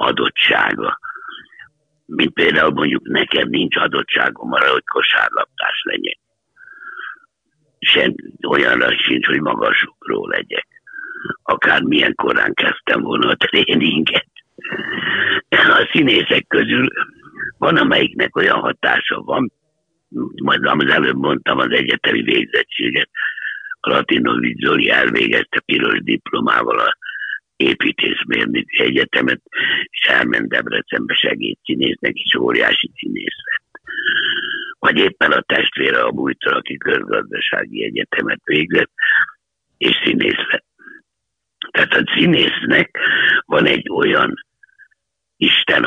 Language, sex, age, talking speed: Hungarian, male, 60-79, 95 wpm